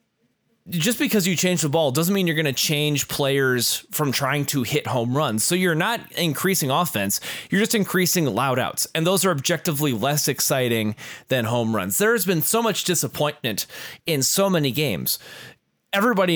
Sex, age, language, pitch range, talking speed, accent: male, 20-39, English, 115-170 Hz, 180 wpm, American